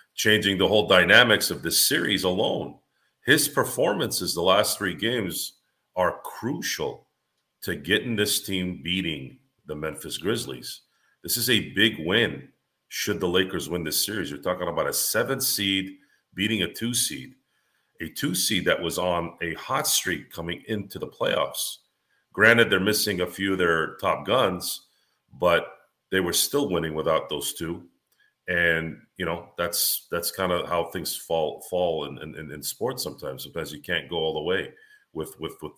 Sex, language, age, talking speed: male, English, 40-59, 170 wpm